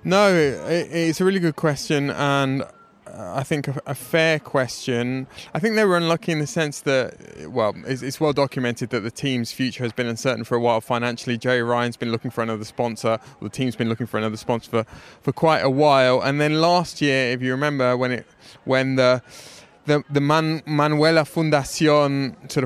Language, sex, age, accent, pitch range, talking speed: English, male, 20-39, British, 120-150 Hz, 195 wpm